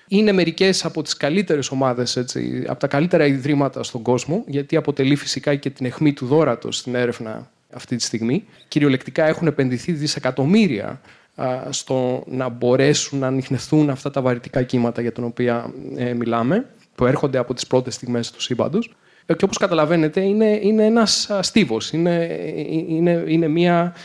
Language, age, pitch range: Greek, 30-49, 130-185 Hz